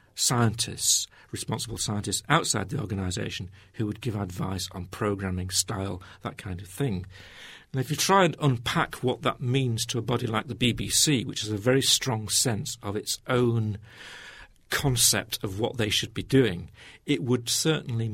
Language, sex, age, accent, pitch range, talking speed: English, male, 50-69, British, 100-120 Hz, 170 wpm